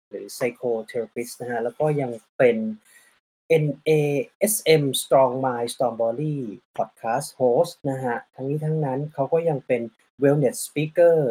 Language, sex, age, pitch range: Thai, male, 30-49, 130-170 Hz